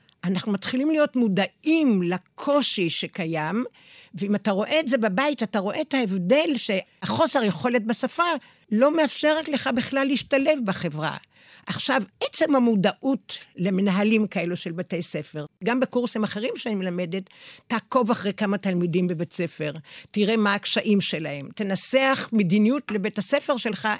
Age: 60-79